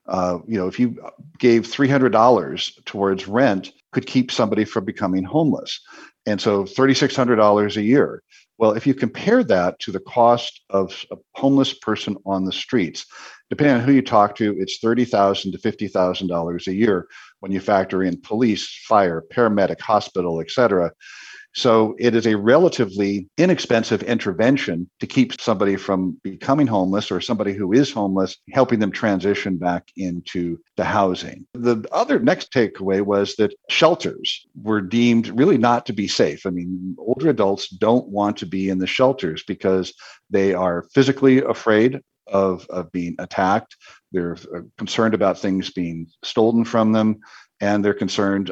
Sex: male